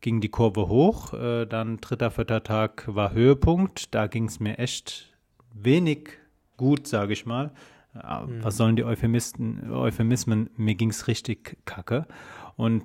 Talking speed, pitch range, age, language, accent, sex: 145 wpm, 110-130 Hz, 30-49, German, German, male